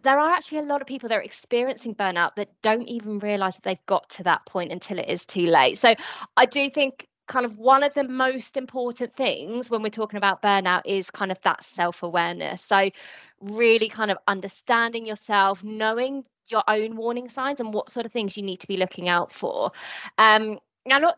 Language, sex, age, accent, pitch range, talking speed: English, female, 20-39, British, 200-255 Hz, 210 wpm